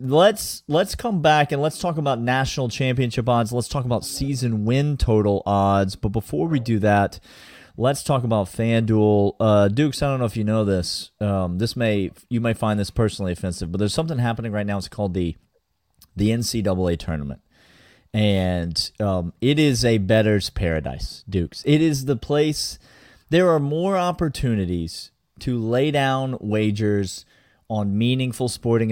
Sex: male